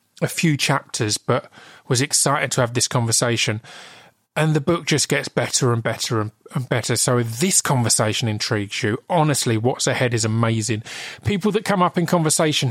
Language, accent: English, British